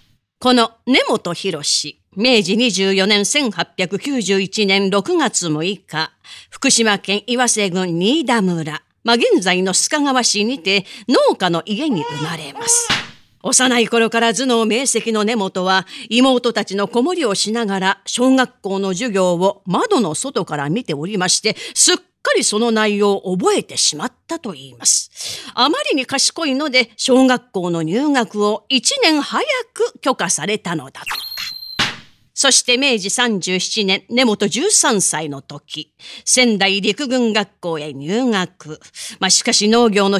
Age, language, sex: 40-59, Japanese, female